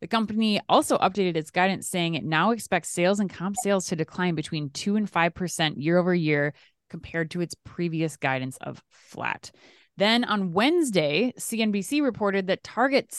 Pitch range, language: 165-215 Hz, English